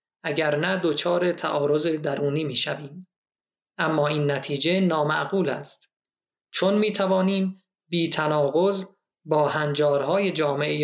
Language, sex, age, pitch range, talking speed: Persian, male, 30-49, 150-185 Hz, 105 wpm